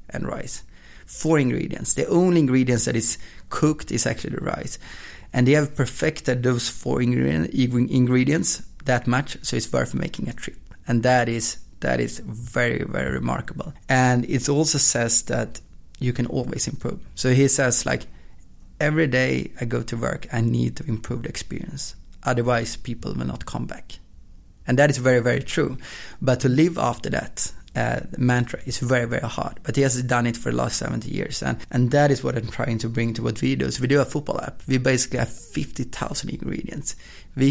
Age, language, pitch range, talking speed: 30-49, English, 115-135 Hz, 190 wpm